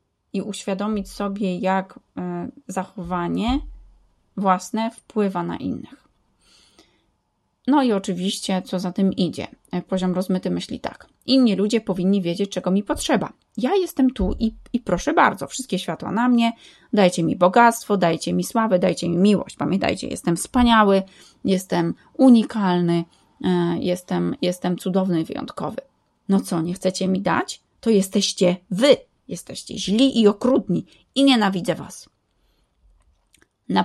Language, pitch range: Polish, 180-225 Hz